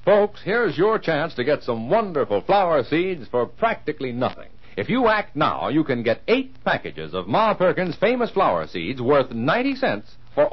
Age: 60-79